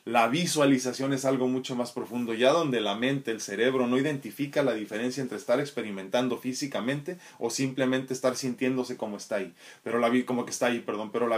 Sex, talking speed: male, 165 wpm